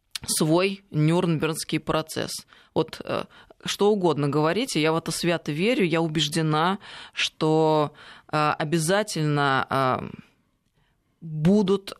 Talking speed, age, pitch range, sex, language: 85 wpm, 20-39, 150-180 Hz, female, Russian